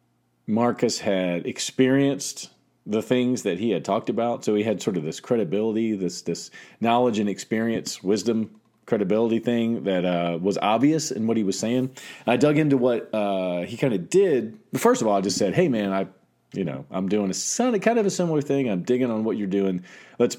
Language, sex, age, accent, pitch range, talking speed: English, male, 40-59, American, 90-120 Hz, 210 wpm